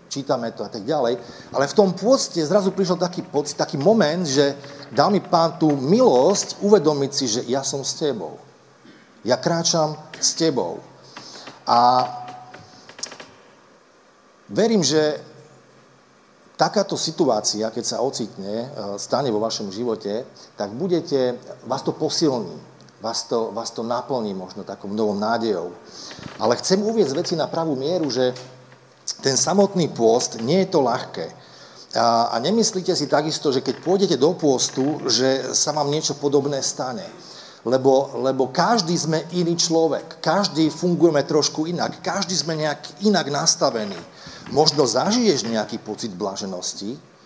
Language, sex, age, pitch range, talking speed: Slovak, male, 40-59, 130-180 Hz, 135 wpm